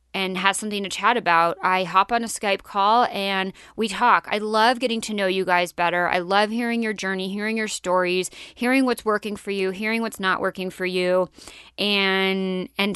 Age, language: 30-49, English